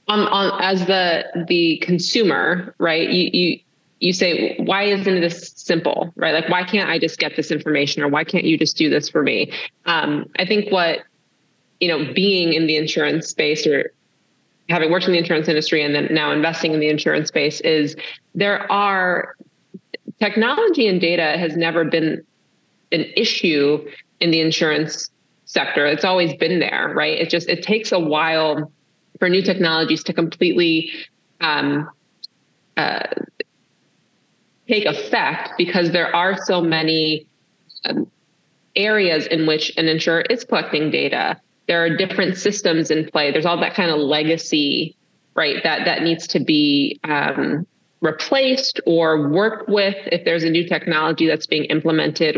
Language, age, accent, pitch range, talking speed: English, 30-49, American, 155-190 Hz, 160 wpm